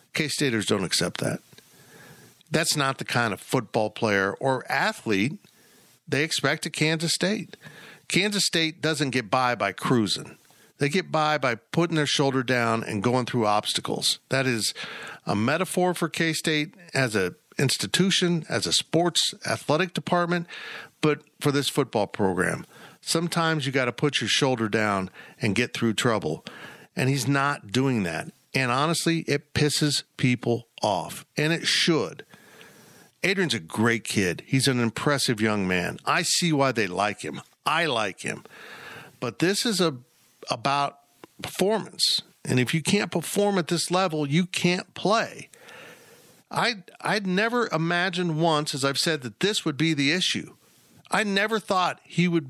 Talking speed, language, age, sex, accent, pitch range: 155 wpm, English, 50-69, male, American, 130-175 Hz